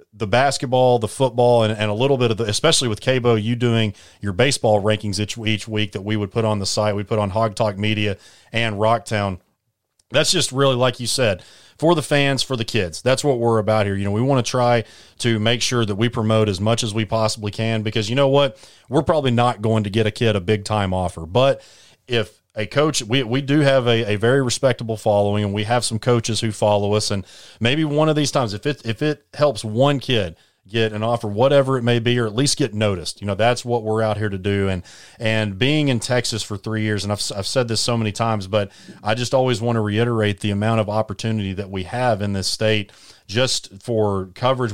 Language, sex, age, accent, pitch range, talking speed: English, male, 30-49, American, 105-120 Hz, 240 wpm